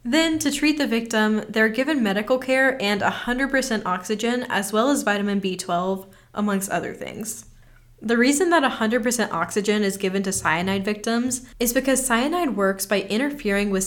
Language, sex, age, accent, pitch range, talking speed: English, female, 10-29, American, 190-235 Hz, 160 wpm